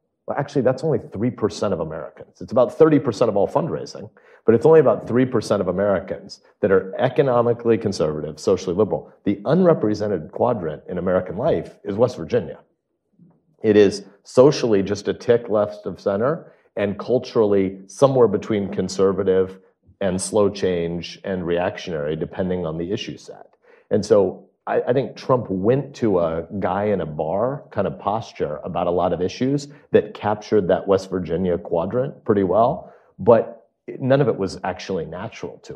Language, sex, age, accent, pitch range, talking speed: English, male, 40-59, American, 95-125 Hz, 160 wpm